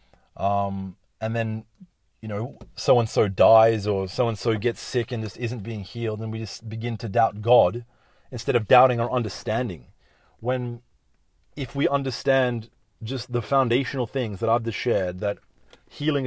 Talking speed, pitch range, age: 155 wpm, 110-130 Hz, 30-49